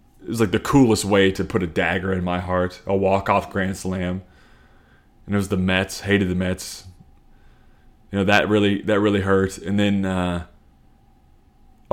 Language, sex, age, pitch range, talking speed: English, male, 30-49, 95-110 Hz, 175 wpm